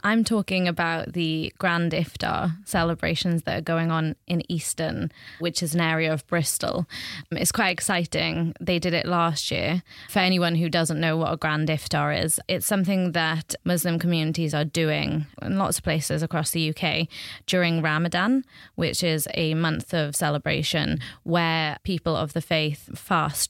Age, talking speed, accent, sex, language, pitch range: 20-39, 165 wpm, British, female, English, 160-180 Hz